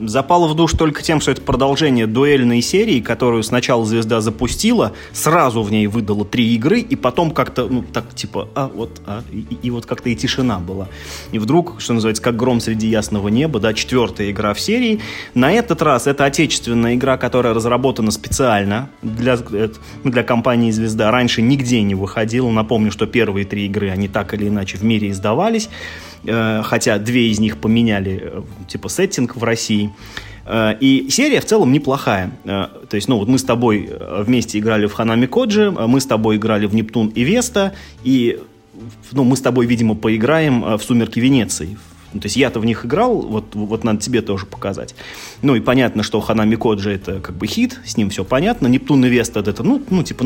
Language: Russian